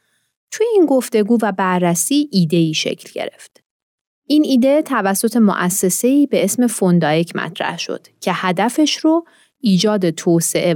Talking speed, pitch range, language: 125 wpm, 175-240 Hz, Persian